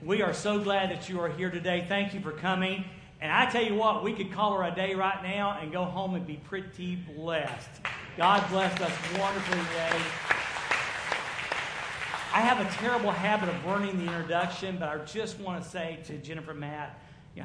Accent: American